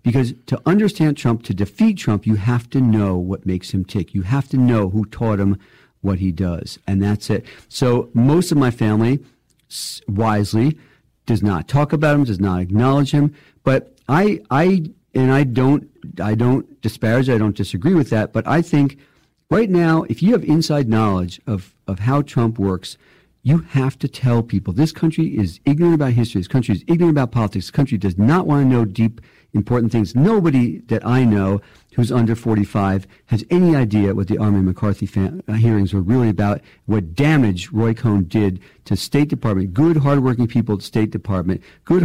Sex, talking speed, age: male, 195 wpm, 50-69